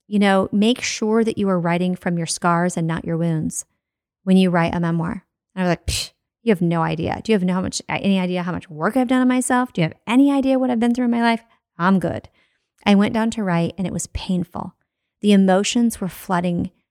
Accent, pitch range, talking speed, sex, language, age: American, 175-220 Hz, 250 wpm, female, English, 30-49